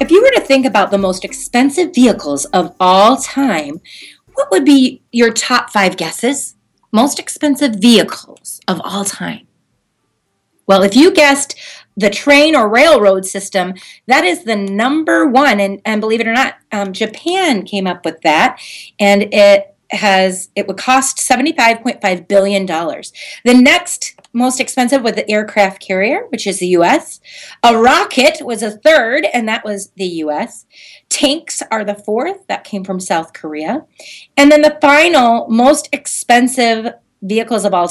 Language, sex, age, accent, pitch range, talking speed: English, female, 30-49, American, 195-275 Hz, 155 wpm